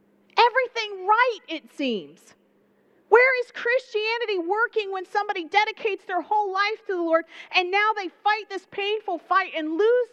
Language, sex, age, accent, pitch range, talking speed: English, female, 40-59, American, 290-385 Hz, 155 wpm